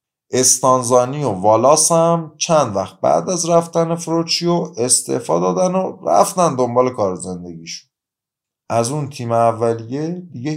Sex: male